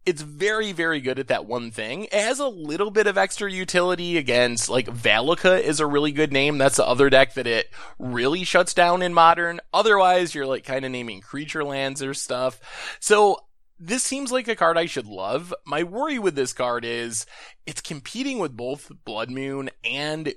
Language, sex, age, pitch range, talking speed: English, male, 20-39, 130-180 Hz, 195 wpm